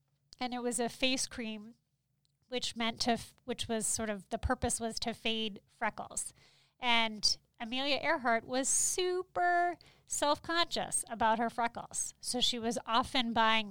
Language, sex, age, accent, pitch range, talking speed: English, female, 30-49, American, 215-260 Hz, 145 wpm